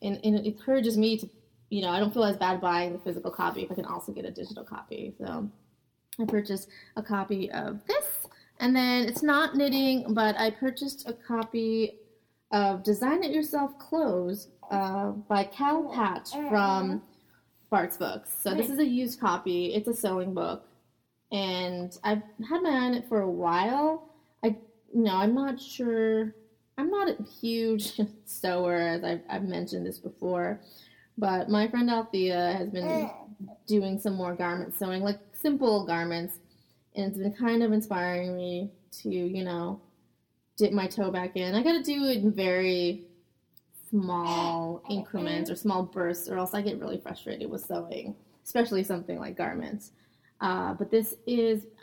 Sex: female